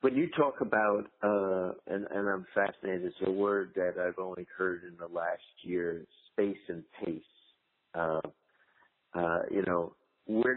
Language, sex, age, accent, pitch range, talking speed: English, male, 50-69, American, 85-95 Hz, 160 wpm